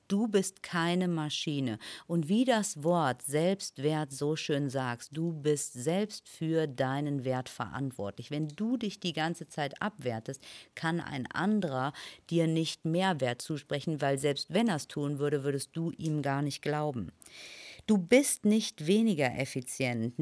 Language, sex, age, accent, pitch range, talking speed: German, female, 50-69, German, 145-205 Hz, 155 wpm